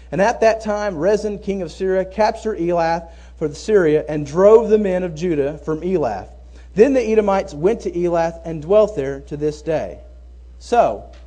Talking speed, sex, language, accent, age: 175 wpm, male, English, American, 40-59